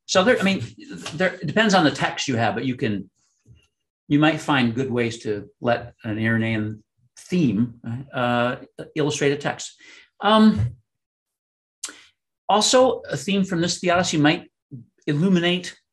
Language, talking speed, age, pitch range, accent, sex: English, 145 wpm, 50-69, 115-155 Hz, American, male